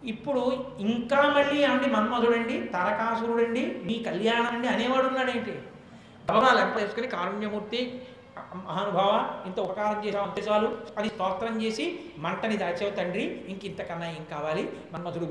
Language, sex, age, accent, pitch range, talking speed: Telugu, male, 60-79, native, 210-260 Hz, 130 wpm